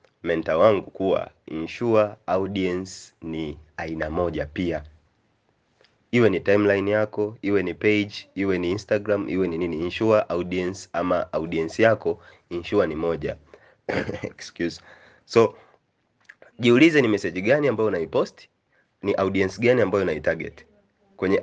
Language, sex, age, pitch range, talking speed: Swahili, male, 30-49, 95-125 Hz, 120 wpm